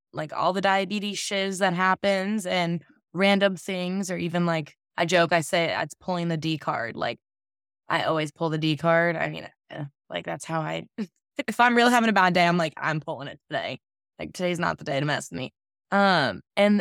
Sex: female